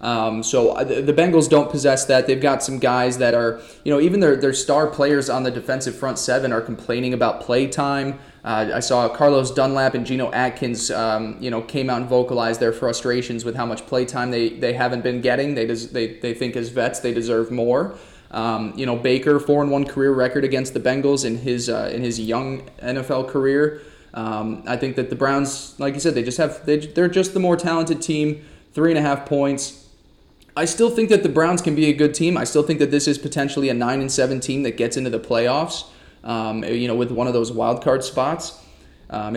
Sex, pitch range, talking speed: male, 120-150 Hz, 225 wpm